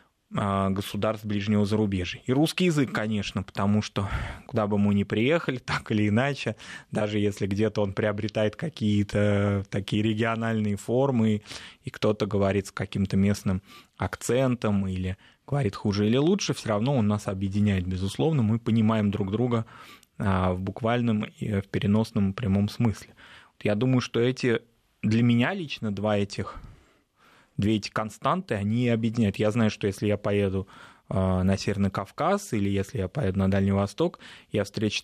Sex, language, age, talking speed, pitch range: male, Russian, 20-39, 150 wpm, 100-120 Hz